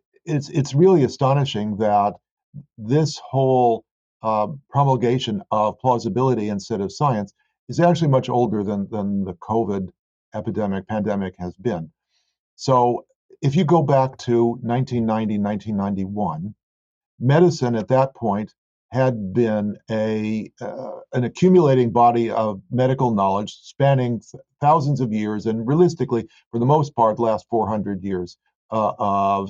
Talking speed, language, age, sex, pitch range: 125 wpm, English, 50-69, male, 105-130 Hz